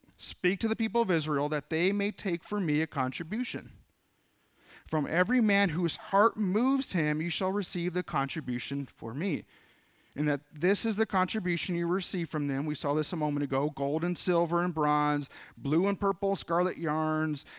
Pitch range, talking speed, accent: 145-180 Hz, 185 wpm, American